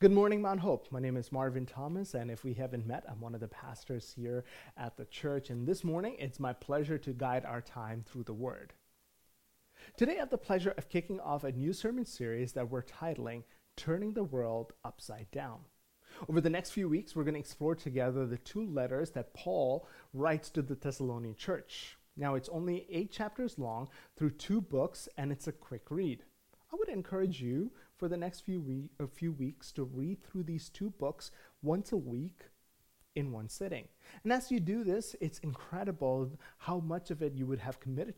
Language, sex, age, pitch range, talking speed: English, male, 30-49, 125-185 Hz, 200 wpm